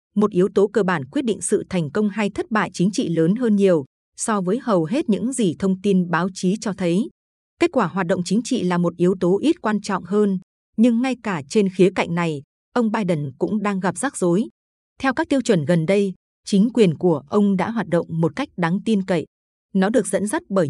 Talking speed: 235 wpm